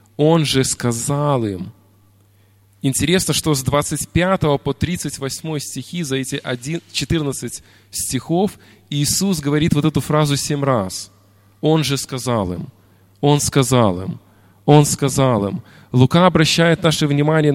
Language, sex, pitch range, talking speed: Russian, male, 105-150 Hz, 125 wpm